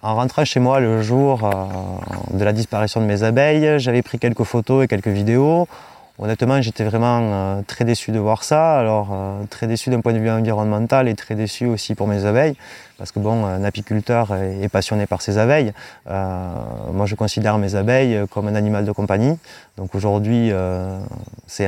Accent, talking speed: French, 185 wpm